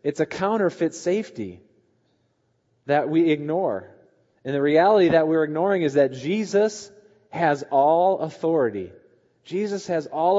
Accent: American